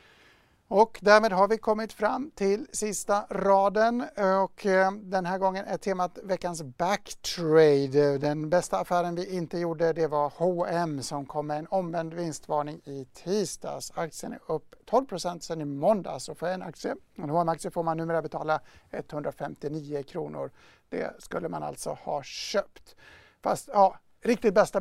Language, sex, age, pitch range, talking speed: English, male, 60-79, 165-195 Hz, 150 wpm